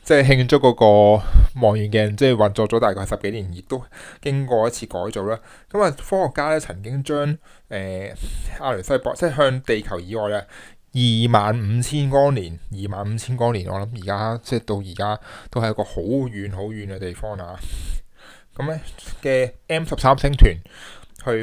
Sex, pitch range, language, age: male, 100-130 Hz, Chinese, 20-39